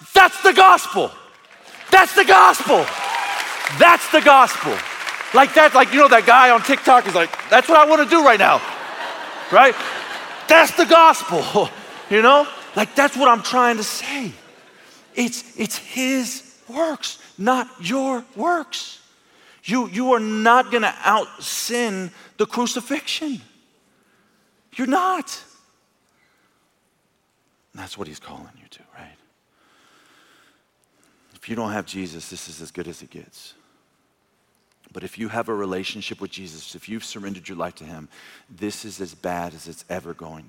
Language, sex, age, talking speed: English, male, 40-59, 145 wpm